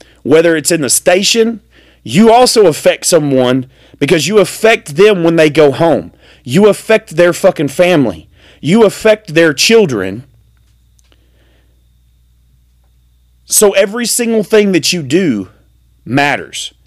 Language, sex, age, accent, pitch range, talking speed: English, male, 30-49, American, 125-205 Hz, 120 wpm